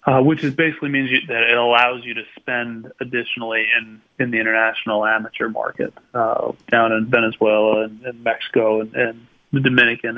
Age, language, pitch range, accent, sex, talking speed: 30-49, English, 115-130 Hz, American, male, 170 wpm